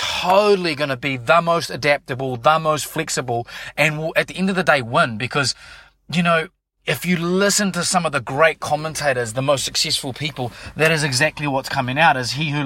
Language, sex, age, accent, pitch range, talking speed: English, male, 30-49, Australian, 125-160 Hz, 215 wpm